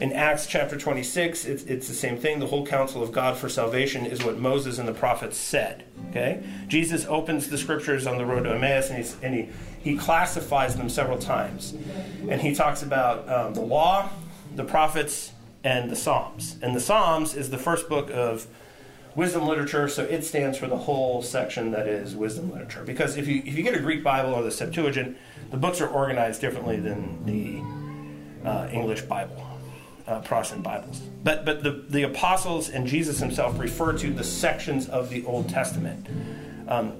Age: 40-59